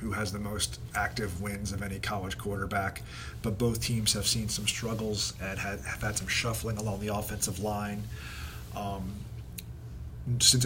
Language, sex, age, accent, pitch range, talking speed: English, male, 40-59, American, 100-115 Hz, 160 wpm